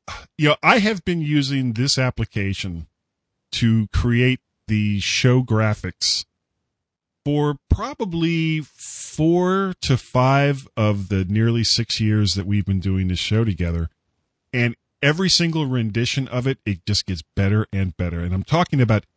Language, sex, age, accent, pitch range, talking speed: English, male, 40-59, American, 100-135 Hz, 140 wpm